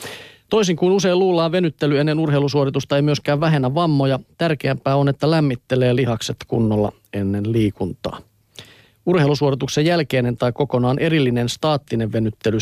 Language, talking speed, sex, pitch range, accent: Finnish, 125 wpm, male, 120-150 Hz, native